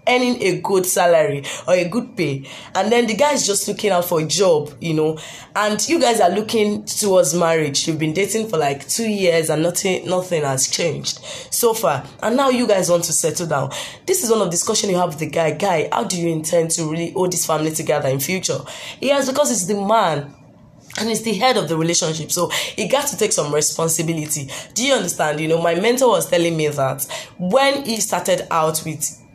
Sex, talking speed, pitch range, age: female, 220 wpm, 150-205 Hz, 20-39